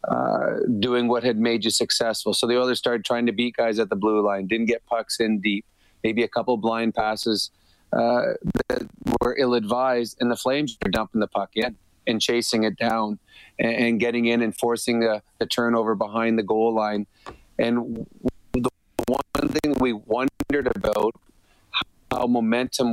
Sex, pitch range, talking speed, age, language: male, 110-125 Hz, 175 wpm, 30-49, English